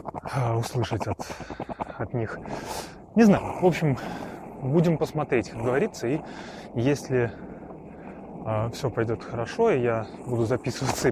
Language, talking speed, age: Russian, 120 wpm, 20-39